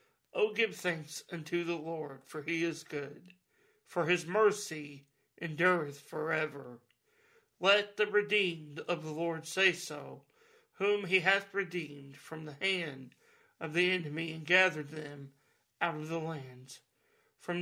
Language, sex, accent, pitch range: English, male, American, 150-200 Hz